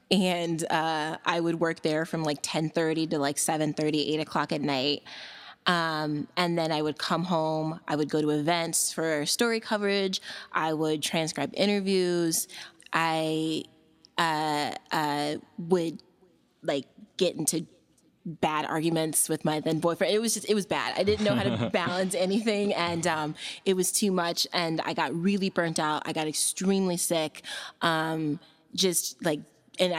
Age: 20-39